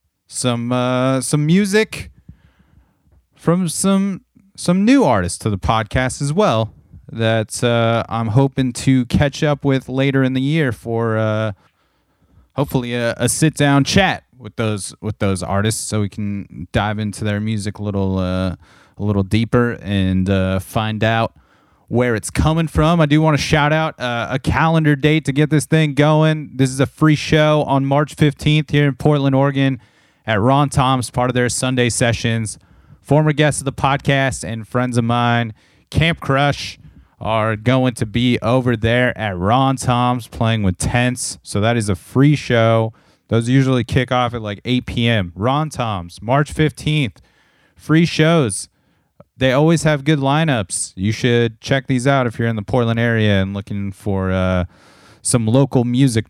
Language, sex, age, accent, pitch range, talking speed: English, male, 30-49, American, 105-140 Hz, 170 wpm